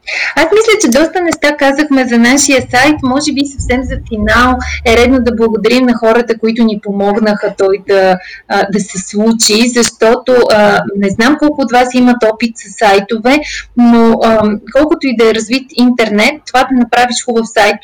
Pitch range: 205-250 Hz